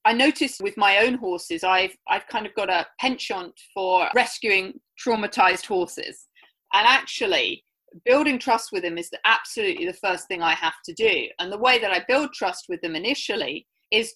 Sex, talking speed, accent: female, 180 wpm, British